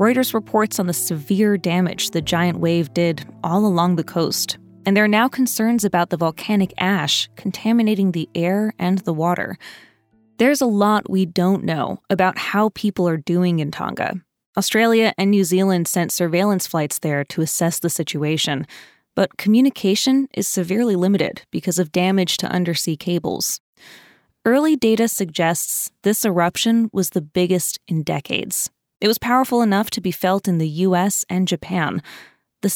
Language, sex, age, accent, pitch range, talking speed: English, female, 20-39, American, 170-215 Hz, 160 wpm